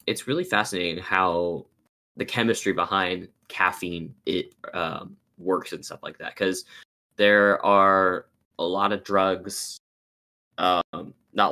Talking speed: 125 wpm